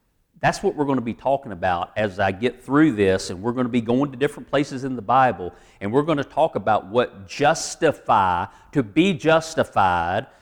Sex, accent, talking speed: male, American, 205 wpm